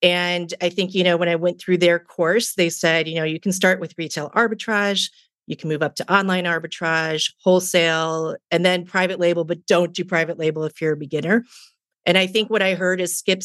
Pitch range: 165-195 Hz